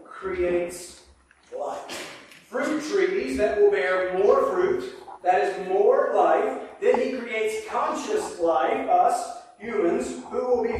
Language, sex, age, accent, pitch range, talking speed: English, male, 40-59, American, 165-230 Hz, 130 wpm